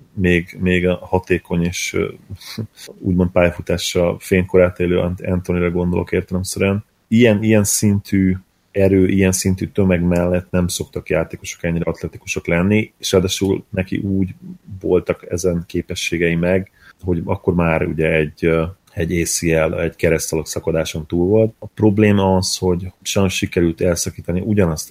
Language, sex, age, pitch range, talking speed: Hungarian, male, 30-49, 80-95 Hz, 130 wpm